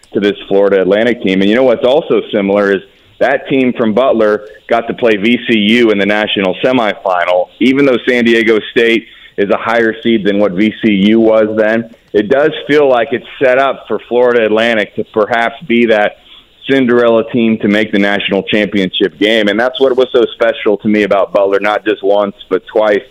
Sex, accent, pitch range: male, American, 100-125 Hz